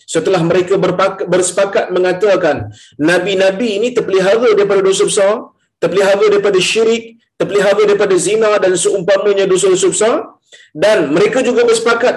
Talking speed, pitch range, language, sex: 125 wpm, 165-225 Hz, Malayalam, male